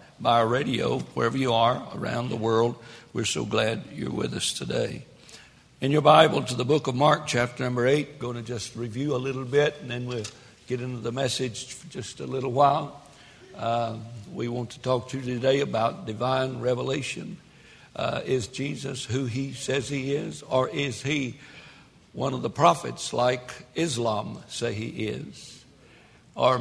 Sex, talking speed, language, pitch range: male, 175 wpm, English, 120-140 Hz